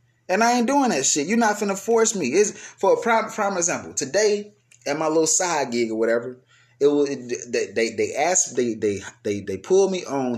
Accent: American